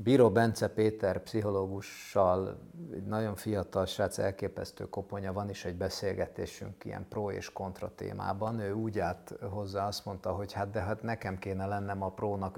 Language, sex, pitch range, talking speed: Hungarian, male, 100-115 Hz, 160 wpm